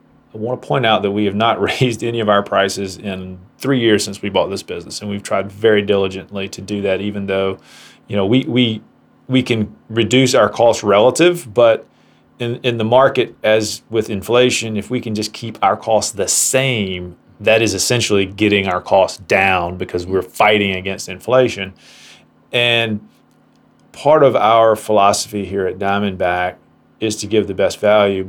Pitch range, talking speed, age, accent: 95-115 Hz, 180 wpm, 30-49, American